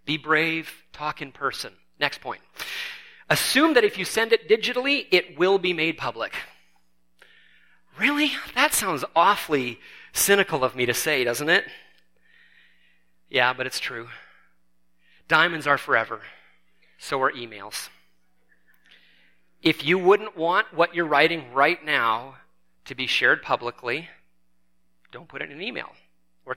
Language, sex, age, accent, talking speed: English, male, 30-49, American, 135 wpm